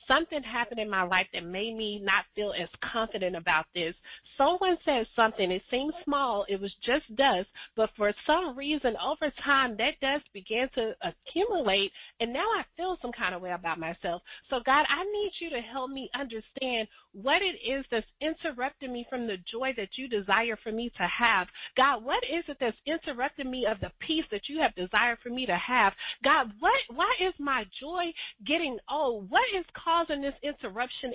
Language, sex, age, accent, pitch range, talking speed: English, female, 30-49, American, 225-315 Hz, 195 wpm